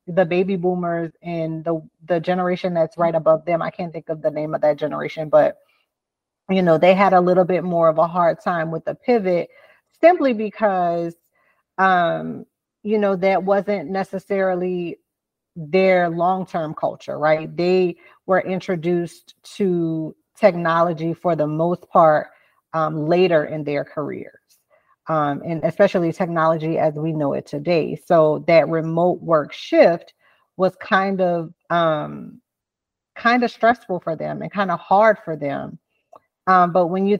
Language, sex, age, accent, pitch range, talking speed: English, female, 30-49, American, 165-200 Hz, 155 wpm